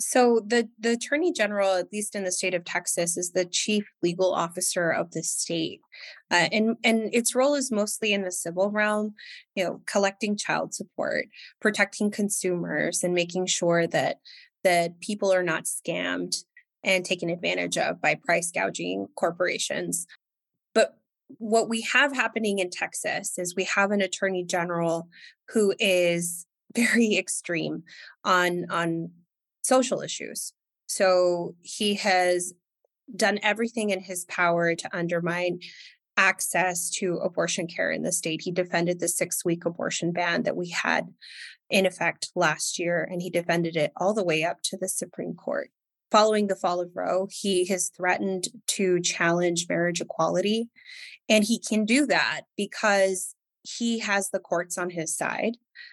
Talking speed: 155 wpm